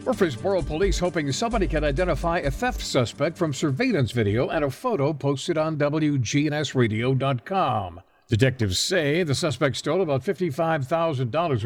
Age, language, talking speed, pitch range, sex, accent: 60-79, English, 130 wpm, 115-165 Hz, male, American